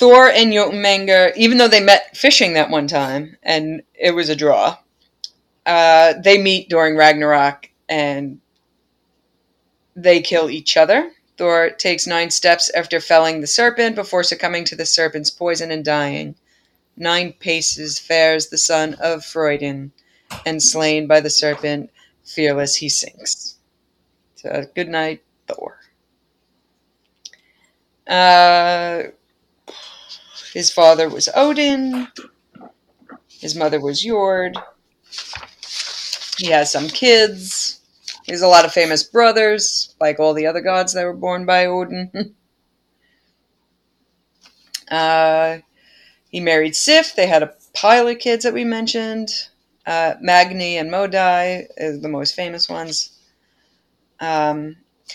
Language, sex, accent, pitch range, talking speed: English, female, American, 155-195 Hz, 125 wpm